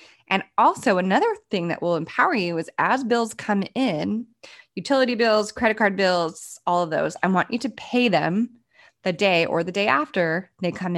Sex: female